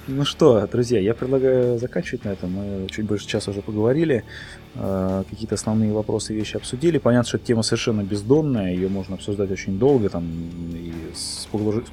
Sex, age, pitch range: male, 20-39, 100-120 Hz